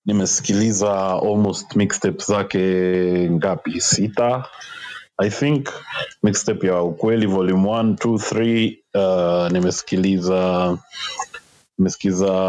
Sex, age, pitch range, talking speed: male, 20-39, 90-110 Hz, 80 wpm